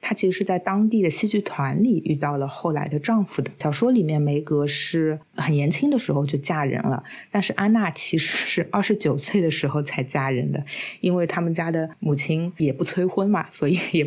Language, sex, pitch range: Chinese, female, 145-190 Hz